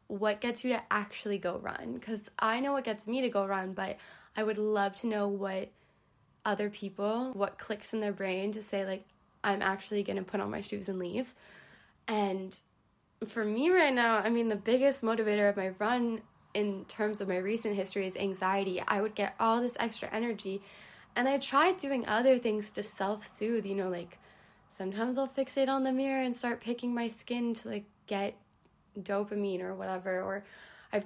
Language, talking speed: English, 195 wpm